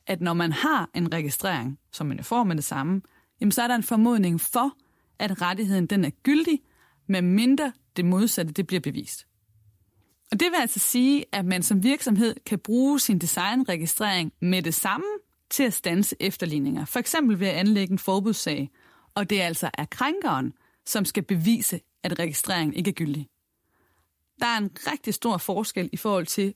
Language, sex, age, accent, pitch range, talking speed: Danish, female, 30-49, native, 155-210 Hz, 180 wpm